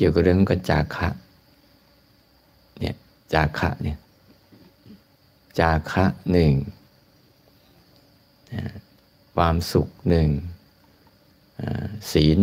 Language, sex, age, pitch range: Thai, male, 60-79, 80-100 Hz